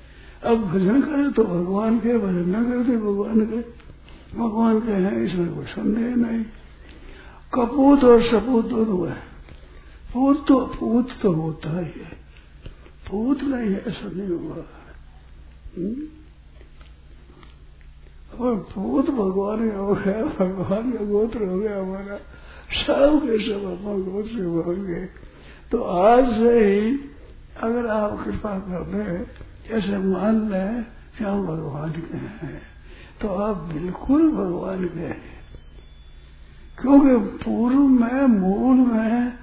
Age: 60-79